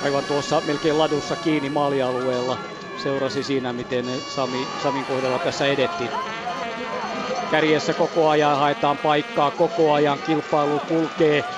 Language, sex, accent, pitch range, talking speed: Finnish, male, native, 145-160 Hz, 120 wpm